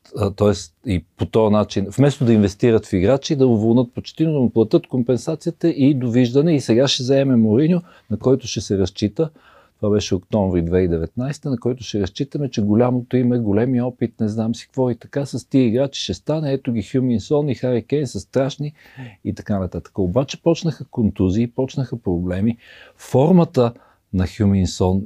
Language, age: Bulgarian, 50-69